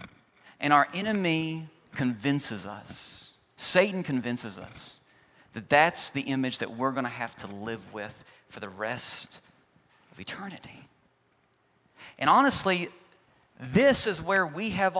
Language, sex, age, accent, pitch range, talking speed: English, male, 40-59, American, 155-230 Hz, 130 wpm